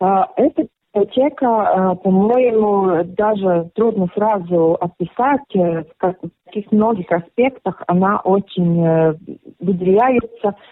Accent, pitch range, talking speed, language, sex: native, 165-205 Hz, 80 wpm, Russian, female